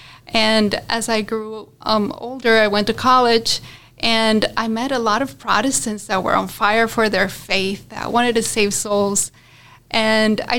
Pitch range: 200-230 Hz